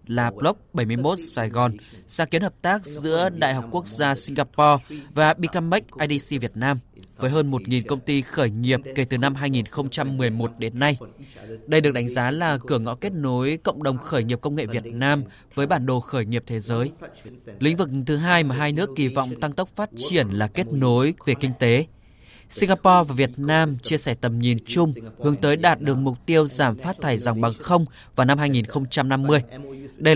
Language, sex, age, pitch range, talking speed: Vietnamese, male, 20-39, 120-155 Hz, 200 wpm